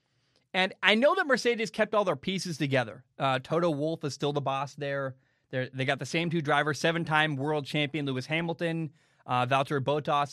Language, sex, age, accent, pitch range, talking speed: English, male, 20-39, American, 135-170 Hz, 190 wpm